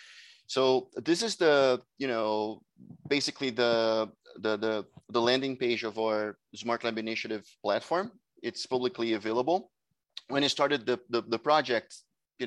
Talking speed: 145 wpm